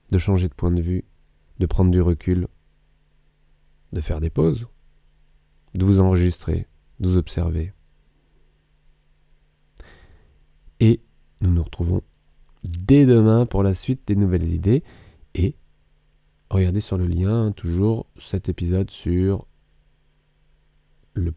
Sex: male